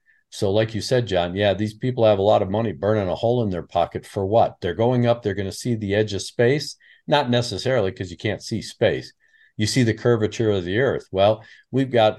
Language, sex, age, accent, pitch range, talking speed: English, male, 50-69, American, 105-130 Hz, 240 wpm